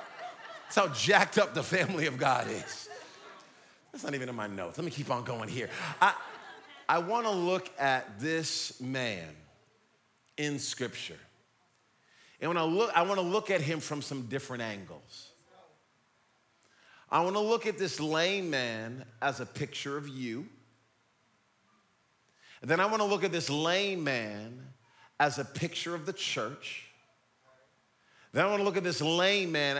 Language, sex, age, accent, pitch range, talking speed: English, male, 40-59, American, 140-195 Hz, 155 wpm